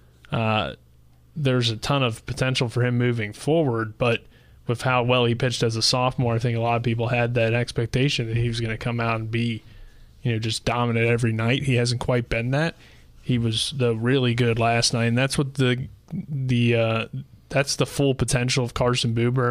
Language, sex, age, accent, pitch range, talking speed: English, male, 20-39, American, 115-125 Hz, 205 wpm